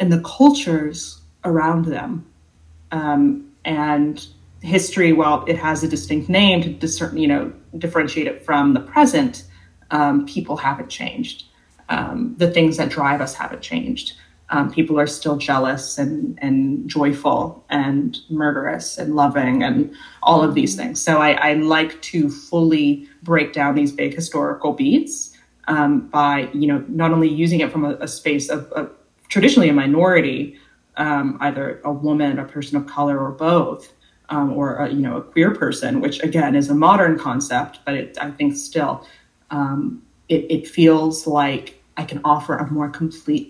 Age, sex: 30-49, female